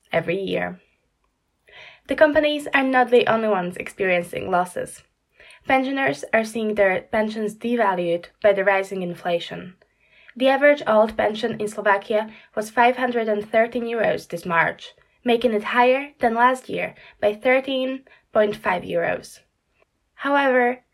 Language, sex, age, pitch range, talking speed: Slovak, female, 10-29, 200-255 Hz, 120 wpm